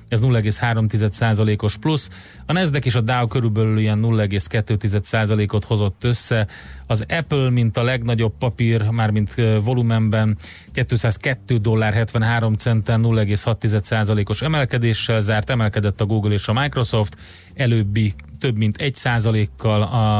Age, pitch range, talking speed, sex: 30-49, 105-125 Hz, 115 wpm, male